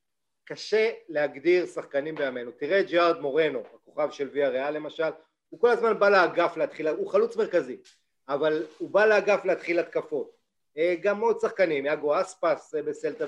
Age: 40-59